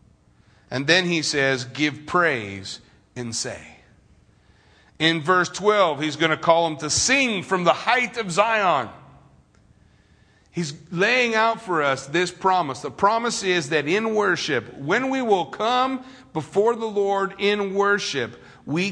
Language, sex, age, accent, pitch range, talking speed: English, male, 40-59, American, 140-190 Hz, 145 wpm